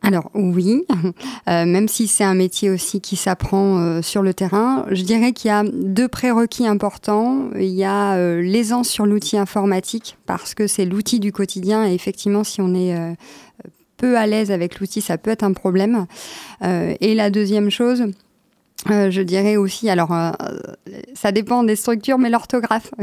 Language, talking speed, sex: French, 180 wpm, female